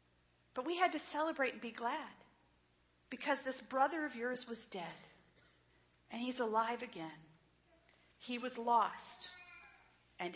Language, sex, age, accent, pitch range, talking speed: English, female, 50-69, American, 190-275 Hz, 135 wpm